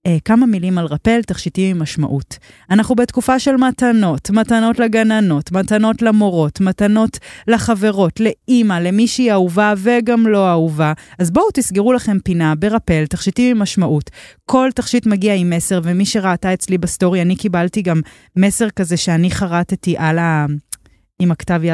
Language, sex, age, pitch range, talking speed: Hebrew, female, 20-39, 165-220 Hz, 145 wpm